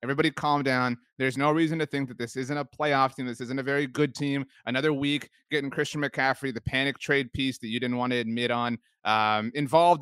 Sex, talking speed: male, 230 wpm